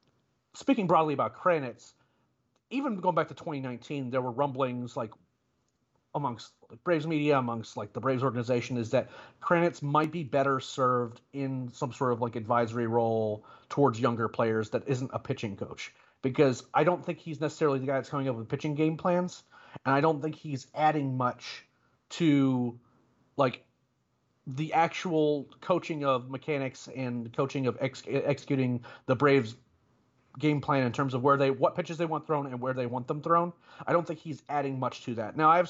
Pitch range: 130-160 Hz